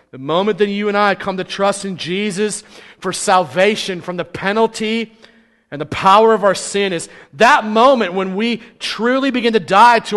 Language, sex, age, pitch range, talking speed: English, male, 40-59, 185-225 Hz, 190 wpm